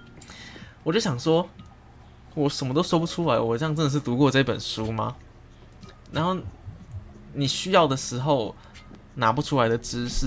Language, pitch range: Chinese, 110-145 Hz